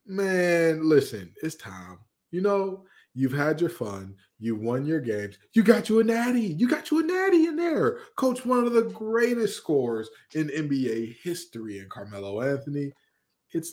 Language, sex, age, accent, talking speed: English, male, 20-39, American, 170 wpm